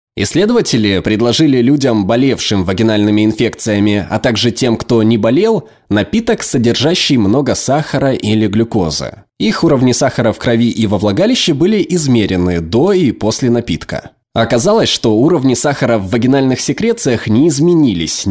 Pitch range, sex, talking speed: 100-140 Hz, male, 135 wpm